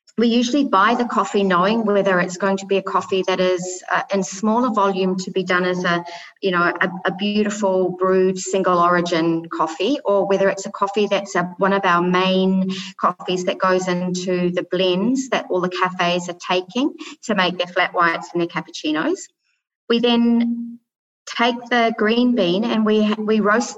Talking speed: 185 wpm